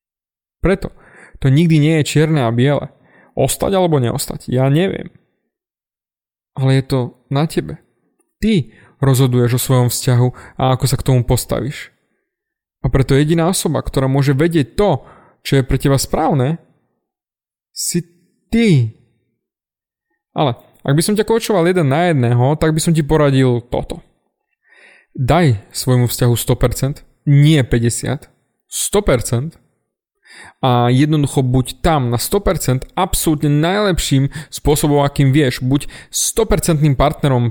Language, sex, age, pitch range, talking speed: Slovak, male, 20-39, 125-165 Hz, 130 wpm